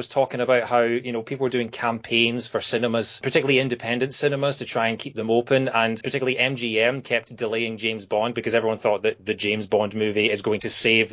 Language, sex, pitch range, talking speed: English, male, 115-140 Hz, 215 wpm